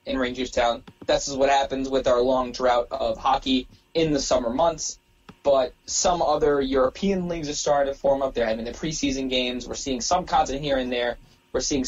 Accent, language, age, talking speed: American, English, 20-39, 205 wpm